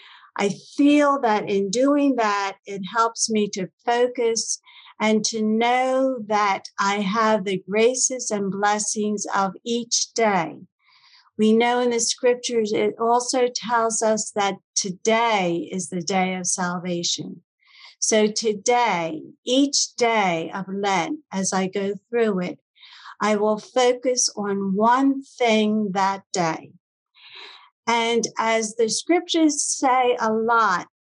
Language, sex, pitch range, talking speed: English, female, 195-245 Hz, 130 wpm